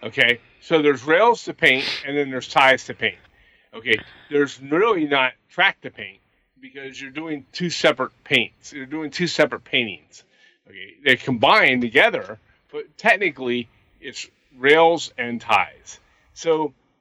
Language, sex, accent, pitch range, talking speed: English, male, American, 125-160 Hz, 145 wpm